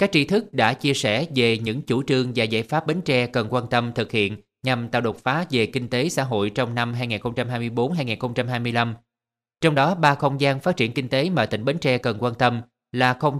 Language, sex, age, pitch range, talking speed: Vietnamese, male, 20-39, 115-145 Hz, 225 wpm